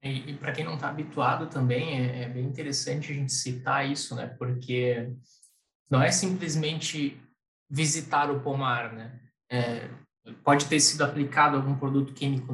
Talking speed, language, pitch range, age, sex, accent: 160 wpm, Portuguese, 130-150 Hz, 20-39, male, Brazilian